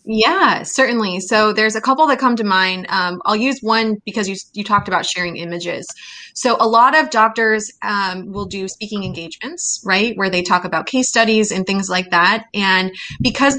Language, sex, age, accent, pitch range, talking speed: English, female, 20-39, American, 185-225 Hz, 195 wpm